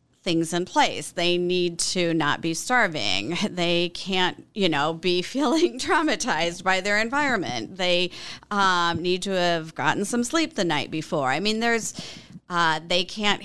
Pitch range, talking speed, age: 165-225 Hz, 160 wpm, 40-59